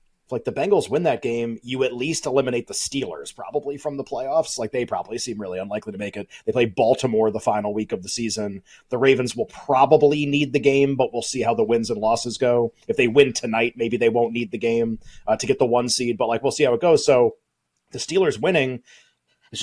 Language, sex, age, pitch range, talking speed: English, male, 30-49, 115-150 Hz, 240 wpm